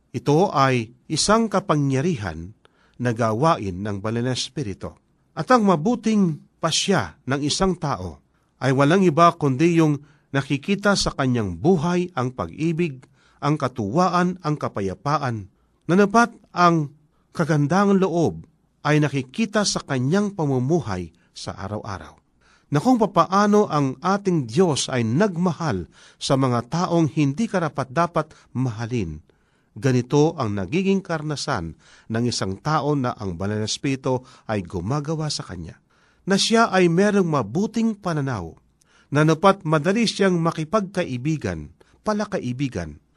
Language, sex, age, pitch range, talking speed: Filipino, male, 40-59, 125-180 Hz, 110 wpm